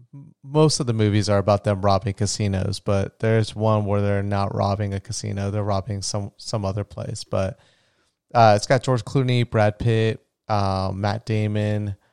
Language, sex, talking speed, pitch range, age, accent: English, male, 180 wpm, 105-125 Hz, 30-49, American